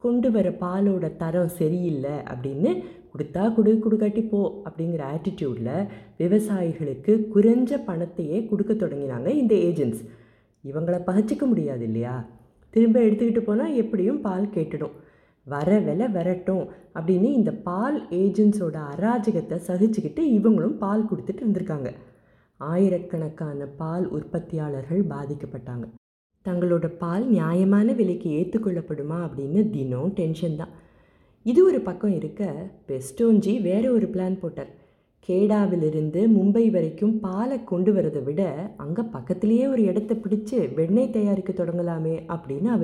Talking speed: 110 wpm